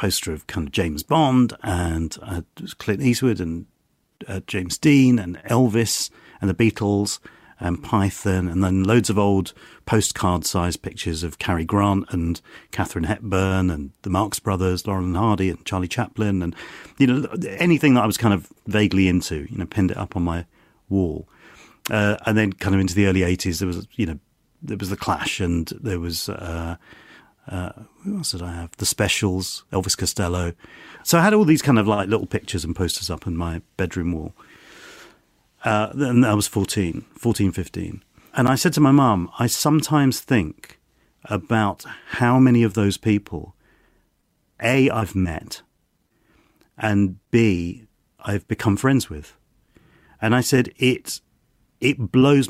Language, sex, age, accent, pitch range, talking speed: English, male, 40-59, British, 90-115 Hz, 170 wpm